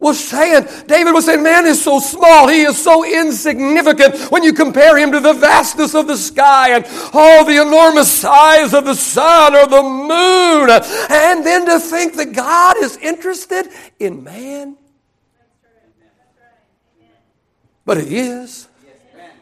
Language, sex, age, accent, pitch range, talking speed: English, male, 60-79, American, 240-320 Hz, 150 wpm